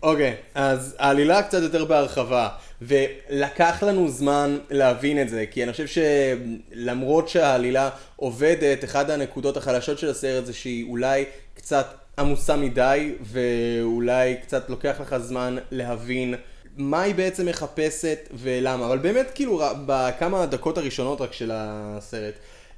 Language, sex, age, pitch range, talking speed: Hebrew, male, 20-39, 115-140 Hz, 130 wpm